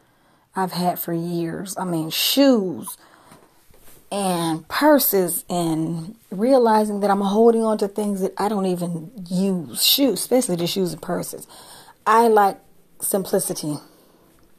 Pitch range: 185-225 Hz